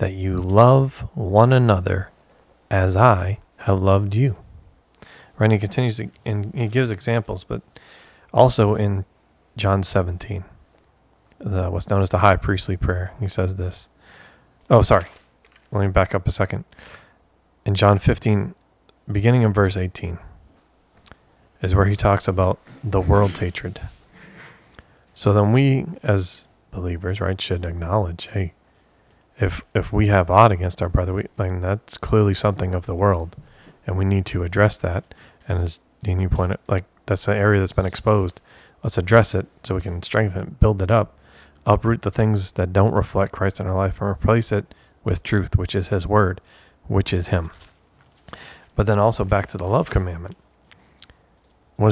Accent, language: American, English